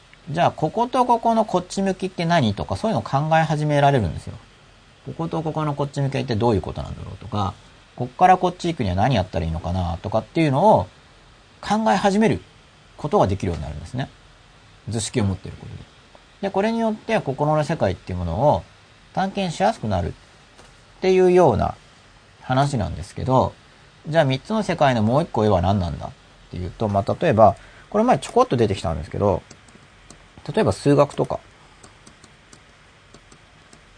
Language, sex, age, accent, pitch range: Japanese, male, 40-59, native, 100-165 Hz